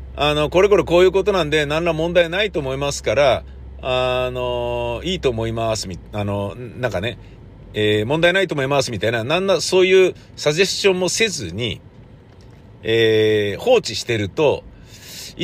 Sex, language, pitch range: male, Japanese, 100-155 Hz